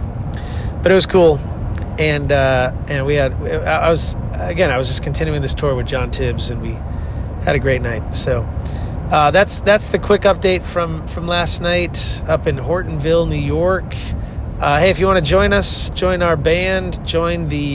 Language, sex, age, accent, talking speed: English, male, 30-49, American, 190 wpm